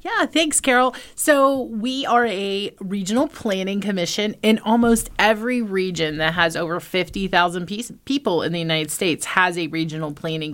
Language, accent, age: English, American, 30-49